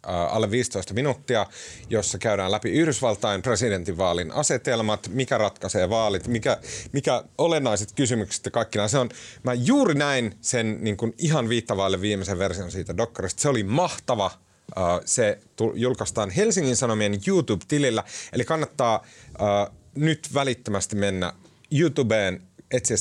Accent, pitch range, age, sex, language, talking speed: native, 100-135 Hz, 30-49, male, Finnish, 120 wpm